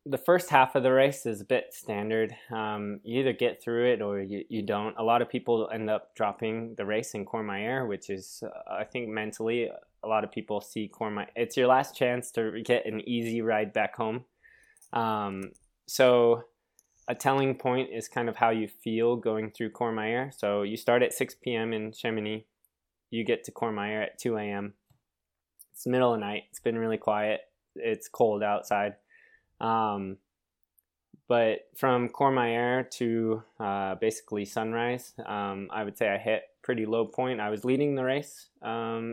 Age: 20-39